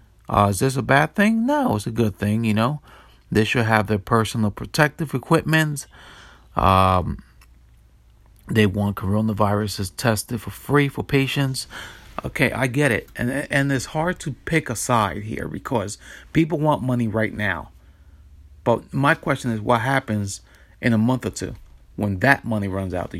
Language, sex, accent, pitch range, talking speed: English, male, American, 95-130 Hz, 170 wpm